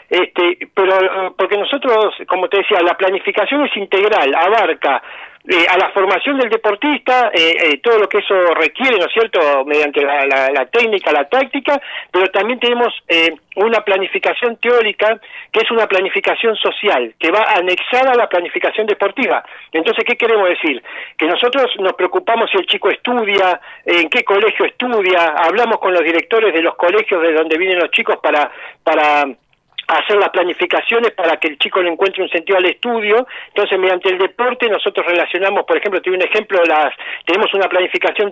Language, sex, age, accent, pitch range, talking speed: Spanish, male, 40-59, Argentinian, 170-230 Hz, 175 wpm